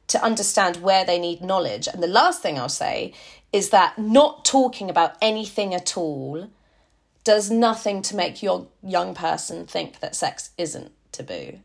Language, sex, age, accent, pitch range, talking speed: English, female, 30-49, British, 160-210 Hz, 165 wpm